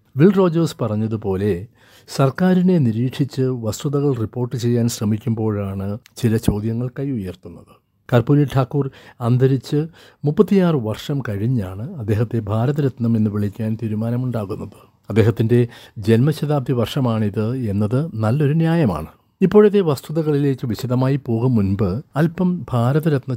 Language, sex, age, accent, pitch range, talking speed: Malayalam, male, 60-79, native, 110-140 Hz, 90 wpm